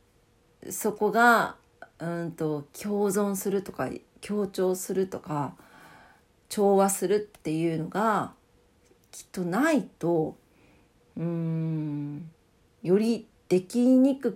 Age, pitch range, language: 40-59, 160-215 Hz, Japanese